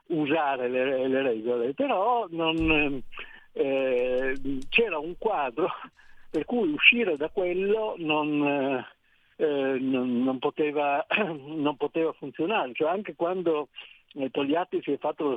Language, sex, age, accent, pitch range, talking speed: Italian, male, 60-79, native, 125-175 Hz, 125 wpm